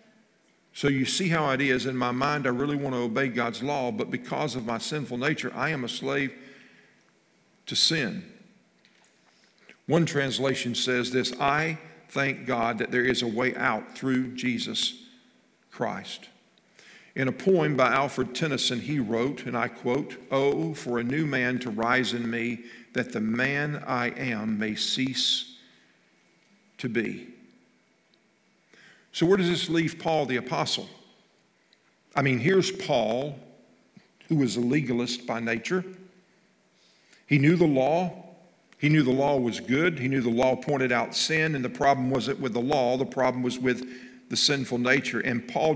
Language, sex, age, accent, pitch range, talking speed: English, male, 50-69, American, 125-160 Hz, 165 wpm